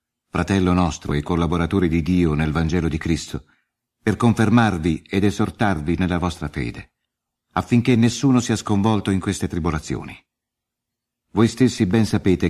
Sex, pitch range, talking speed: male, 85-110 Hz, 135 wpm